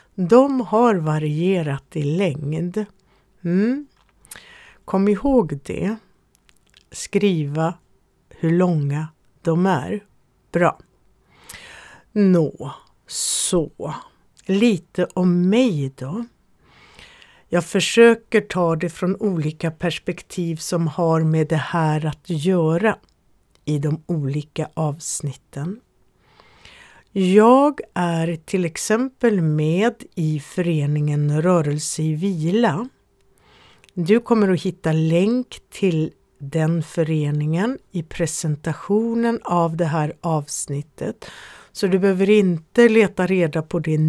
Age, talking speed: 60-79, 95 wpm